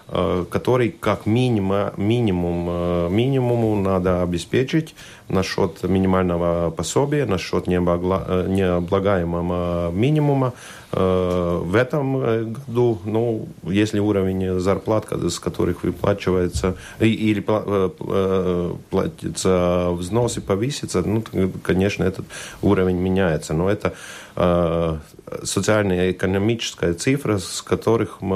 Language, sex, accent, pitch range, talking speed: Russian, male, native, 90-110 Hz, 85 wpm